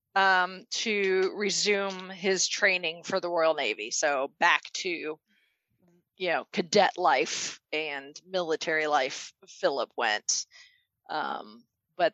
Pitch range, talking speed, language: 165-235 Hz, 115 wpm, English